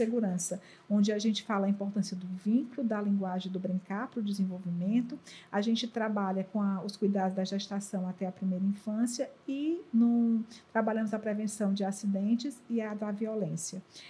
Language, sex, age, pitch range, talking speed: Portuguese, female, 50-69, 200-240 Hz, 160 wpm